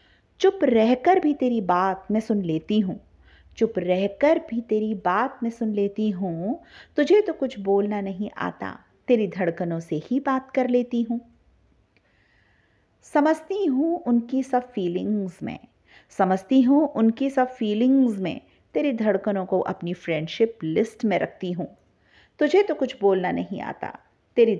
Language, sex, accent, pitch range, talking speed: Hindi, female, native, 185-260 Hz, 145 wpm